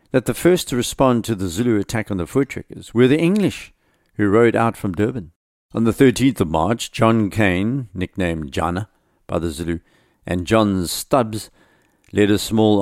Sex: male